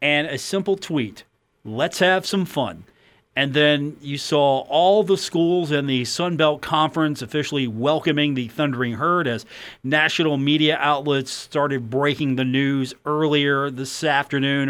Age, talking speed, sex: 40-59, 145 wpm, male